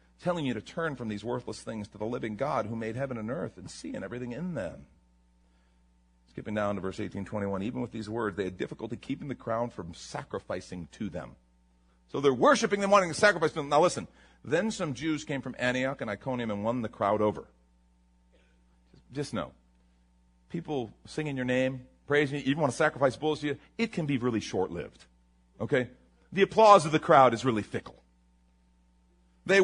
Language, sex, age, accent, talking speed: English, male, 40-59, American, 195 wpm